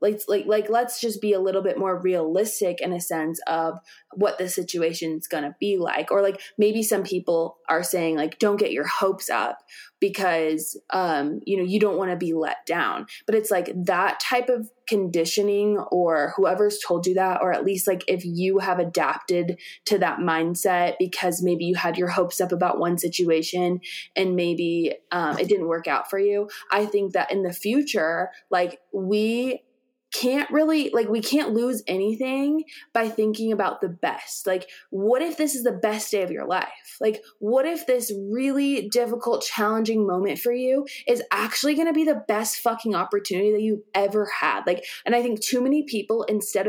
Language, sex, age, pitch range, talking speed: English, female, 20-39, 180-230 Hz, 195 wpm